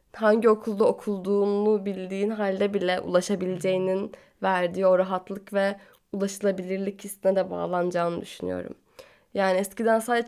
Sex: female